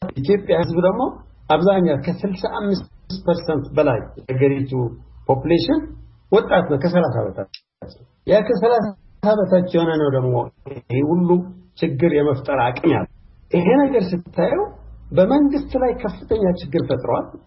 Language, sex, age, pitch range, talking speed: Amharic, male, 50-69, 135-195 Hz, 95 wpm